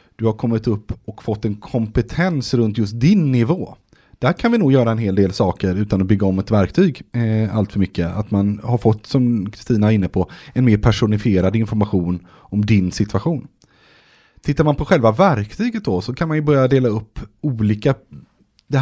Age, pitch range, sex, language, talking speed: 30-49, 105-145 Hz, male, Swedish, 200 wpm